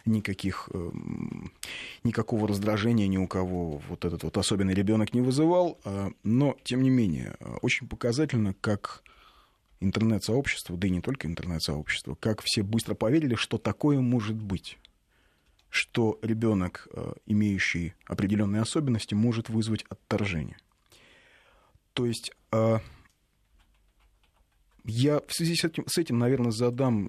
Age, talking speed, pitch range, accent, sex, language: 30-49, 110 wpm, 90-115 Hz, native, male, Russian